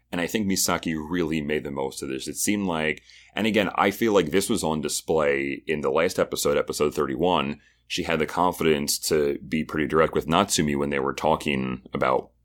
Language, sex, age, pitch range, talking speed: English, male, 30-49, 70-85 Hz, 205 wpm